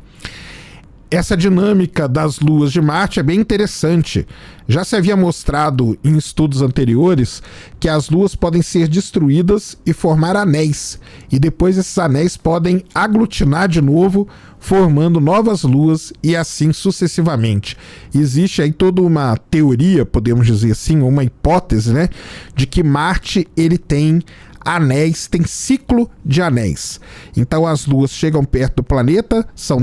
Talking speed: 135 wpm